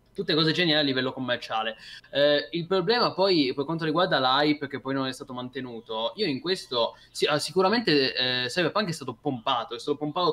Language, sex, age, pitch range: Italian, male, 20-39, 130-155 Hz